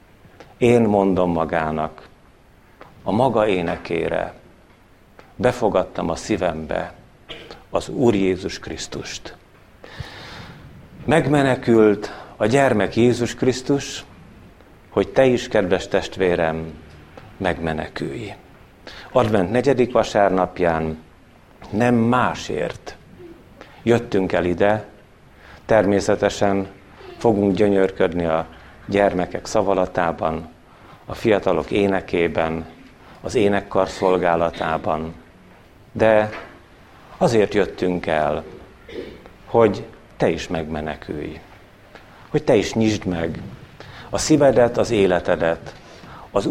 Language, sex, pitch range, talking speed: Hungarian, male, 85-115 Hz, 80 wpm